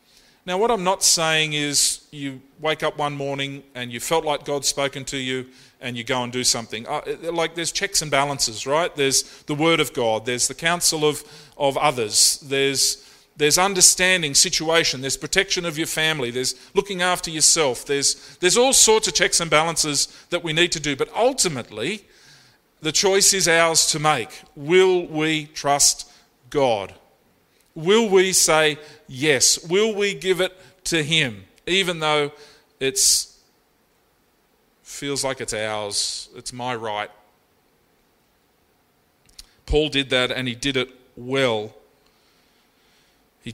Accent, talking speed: Australian, 150 wpm